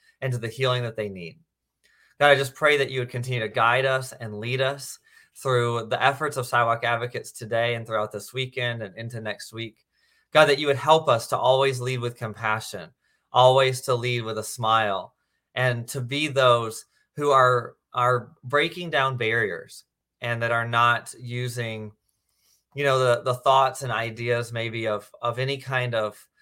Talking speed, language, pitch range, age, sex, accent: 185 wpm, English, 110-130 Hz, 30-49, male, American